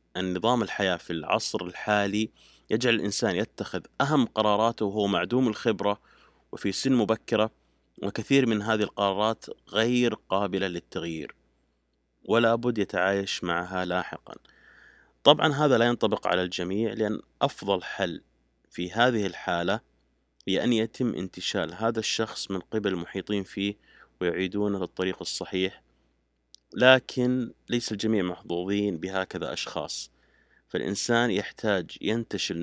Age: 30-49